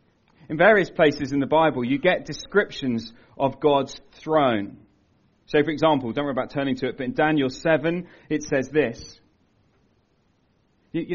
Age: 40-59